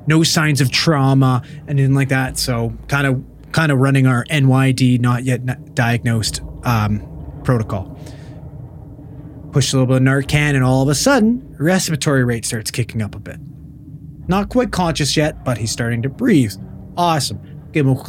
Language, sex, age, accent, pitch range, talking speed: English, male, 30-49, American, 125-155 Hz, 175 wpm